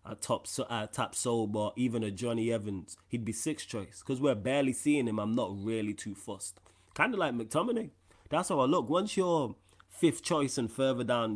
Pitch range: 105-130 Hz